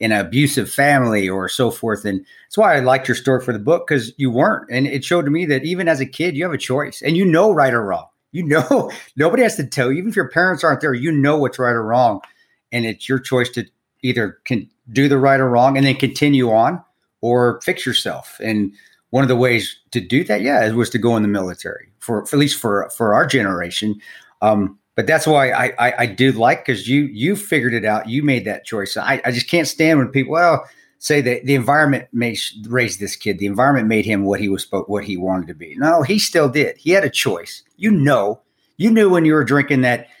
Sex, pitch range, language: male, 110-140 Hz, English